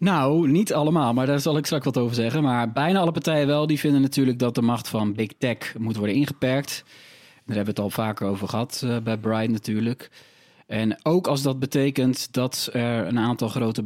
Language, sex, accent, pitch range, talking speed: Dutch, male, Dutch, 110-135 Hz, 210 wpm